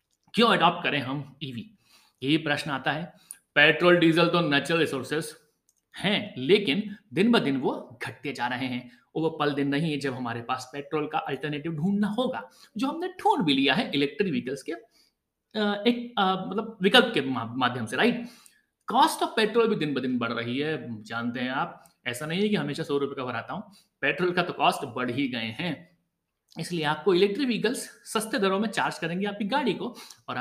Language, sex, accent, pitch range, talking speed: Hindi, male, native, 140-210 Hz, 185 wpm